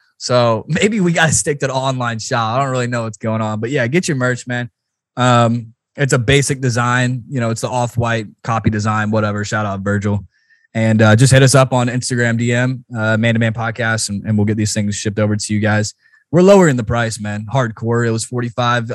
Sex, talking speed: male, 230 wpm